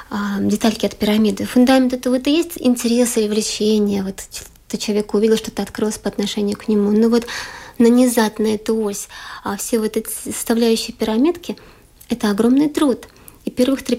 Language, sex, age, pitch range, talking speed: Russian, female, 20-39, 210-245 Hz, 170 wpm